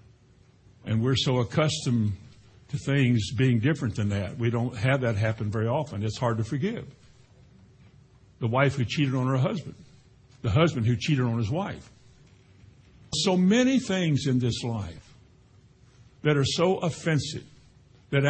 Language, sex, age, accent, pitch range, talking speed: English, male, 60-79, American, 120-150 Hz, 150 wpm